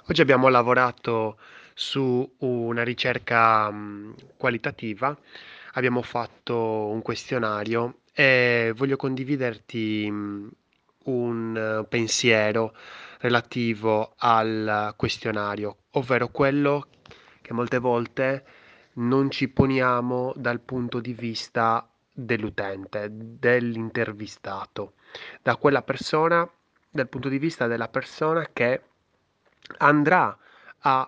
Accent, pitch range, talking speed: native, 110-135 Hz, 85 wpm